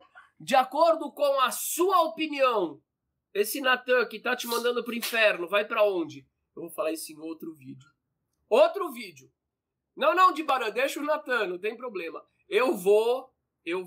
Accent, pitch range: Brazilian, 220-330 Hz